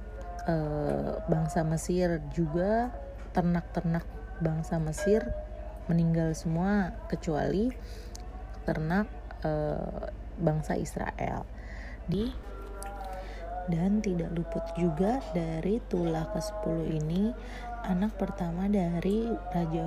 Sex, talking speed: female, 80 wpm